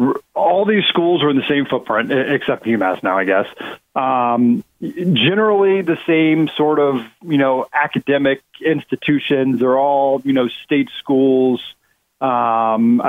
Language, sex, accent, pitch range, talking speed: English, male, American, 120-155 Hz, 140 wpm